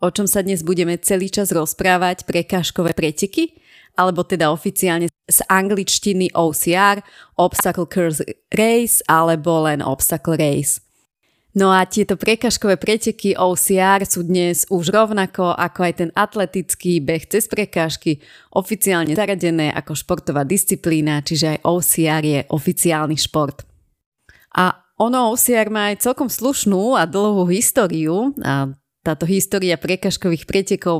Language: Slovak